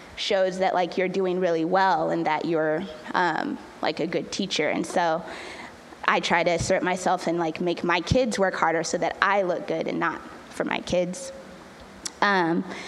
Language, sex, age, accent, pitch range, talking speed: English, female, 20-39, American, 175-195 Hz, 185 wpm